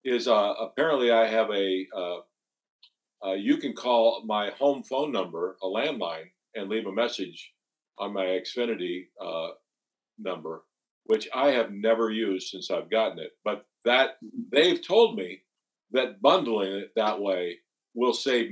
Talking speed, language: 150 wpm, English